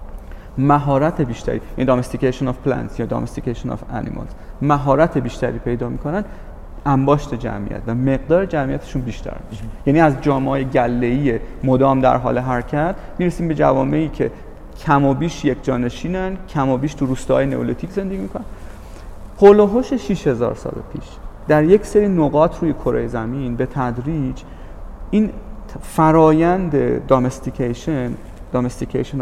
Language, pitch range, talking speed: Persian, 120-155 Hz, 135 wpm